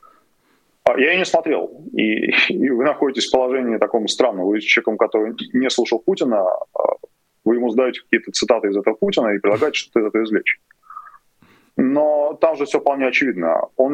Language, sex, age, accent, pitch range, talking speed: Russian, male, 20-39, native, 105-150 Hz, 170 wpm